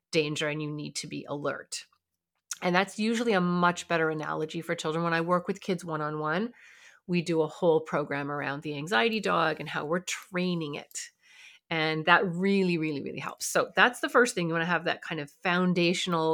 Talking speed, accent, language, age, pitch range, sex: 200 wpm, American, English, 30-49, 165-220 Hz, female